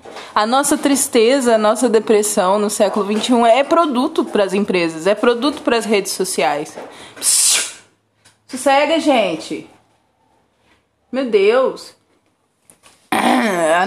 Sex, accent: female, Brazilian